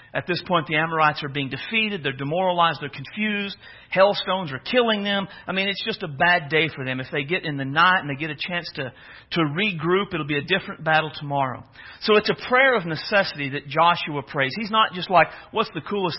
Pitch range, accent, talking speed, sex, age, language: 160-255 Hz, American, 225 wpm, male, 50-69, English